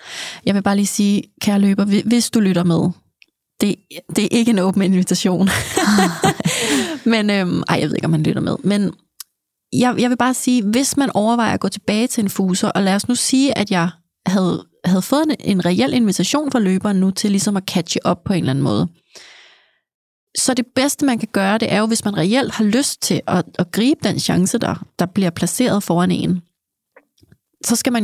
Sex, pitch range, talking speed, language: female, 190-230 Hz, 210 wpm, Danish